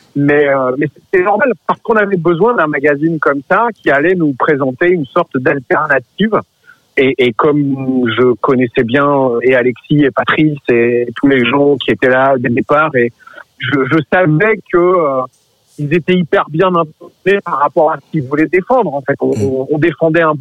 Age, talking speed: 50-69, 185 wpm